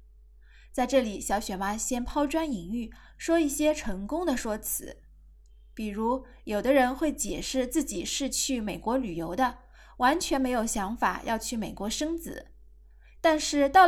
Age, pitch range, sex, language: 20-39, 200-285 Hz, female, Chinese